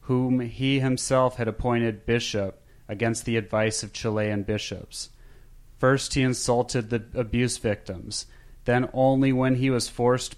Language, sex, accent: English, male, American